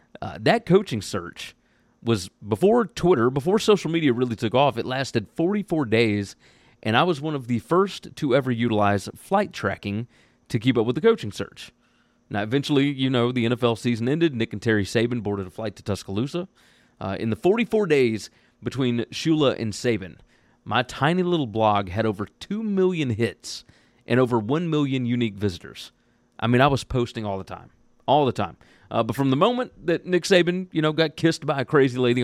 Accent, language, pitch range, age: American, English, 115-160 Hz, 30-49